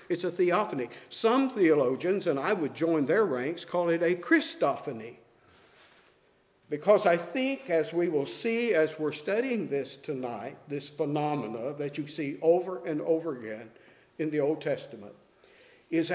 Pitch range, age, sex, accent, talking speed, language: 160-215 Hz, 50-69, male, American, 150 wpm, English